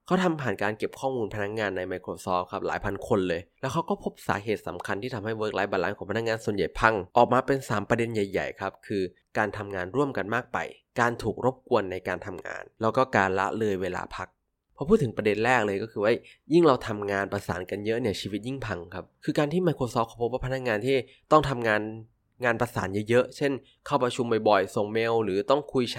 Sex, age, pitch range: male, 20-39, 100-130 Hz